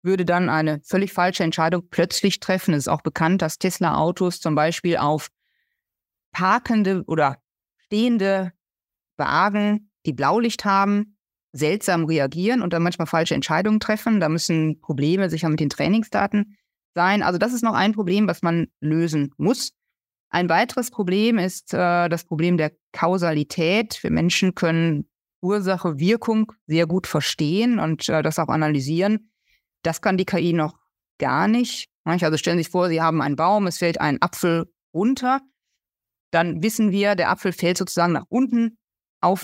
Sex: female